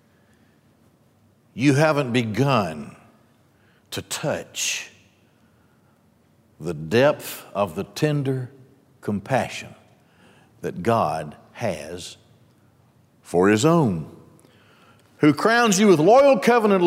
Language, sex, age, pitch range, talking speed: English, male, 60-79, 115-175 Hz, 80 wpm